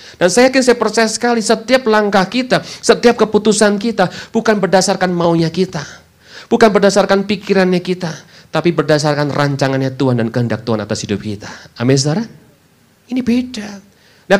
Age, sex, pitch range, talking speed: 40-59, male, 150-245 Hz, 145 wpm